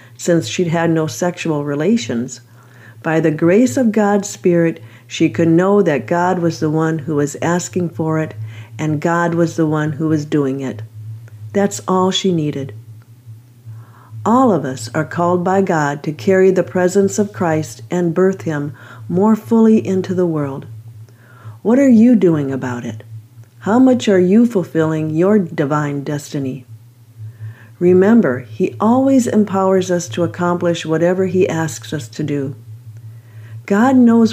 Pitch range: 120-185 Hz